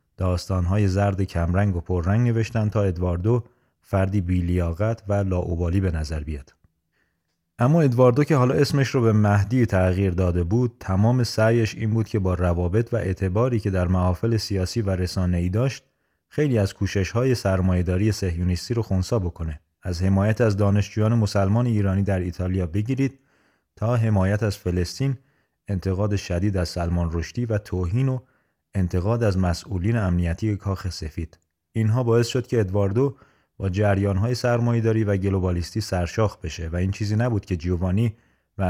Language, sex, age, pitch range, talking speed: Persian, male, 30-49, 90-110 Hz, 150 wpm